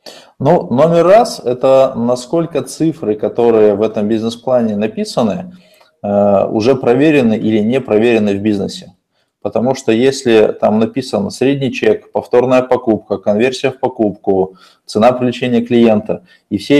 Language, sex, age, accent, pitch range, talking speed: Russian, male, 20-39, native, 110-135 Hz, 130 wpm